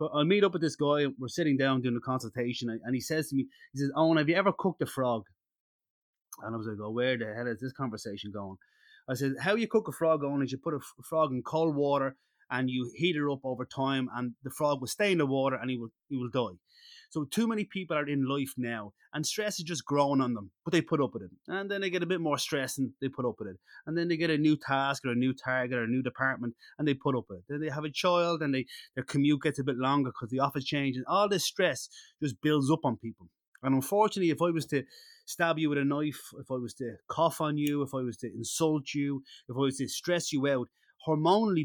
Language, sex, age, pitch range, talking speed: English, male, 30-49, 125-155 Hz, 270 wpm